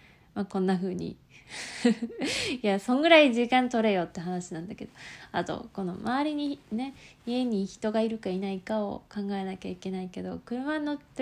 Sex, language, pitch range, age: female, Japanese, 190-245 Hz, 20-39